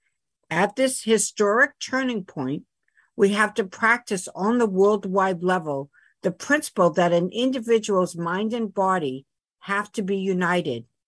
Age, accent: 50-69, American